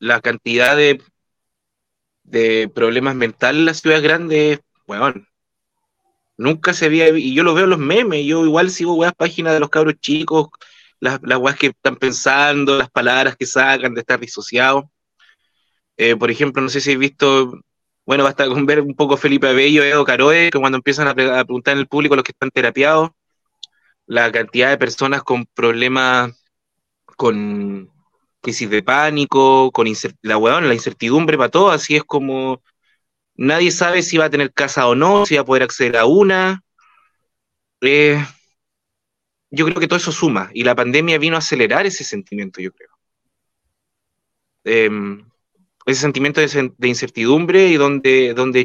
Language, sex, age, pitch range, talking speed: Spanish, male, 20-39, 125-155 Hz, 170 wpm